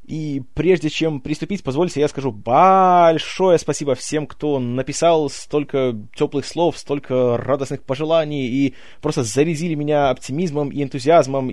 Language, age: Russian, 20-39